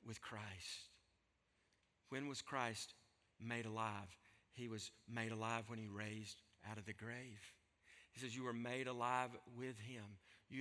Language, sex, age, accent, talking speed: English, male, 50-69, American, 155 wpm